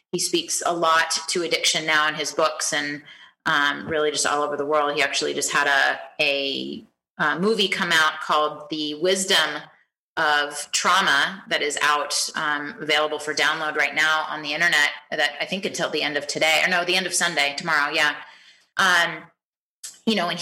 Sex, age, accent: female, 30-49, American